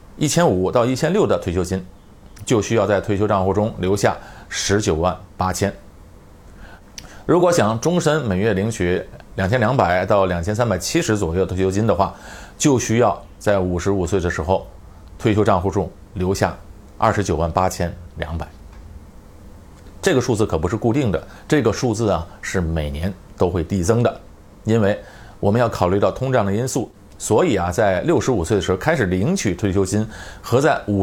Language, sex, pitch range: Chinese, male, 90-110 Hz